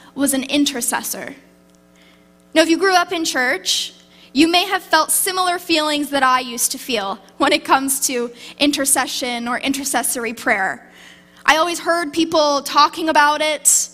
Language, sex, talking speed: English, female, 155 wpm